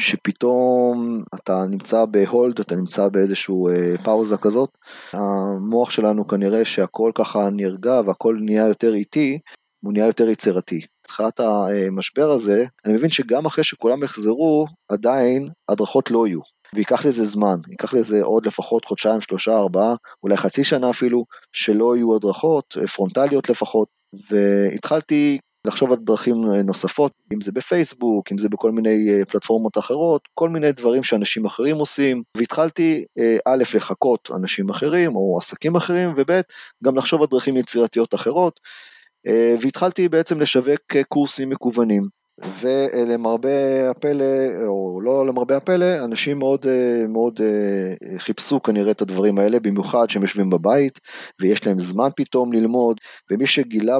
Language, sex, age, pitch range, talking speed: Hebrew, male, 30-49, 105-135 Hz, 135 wpm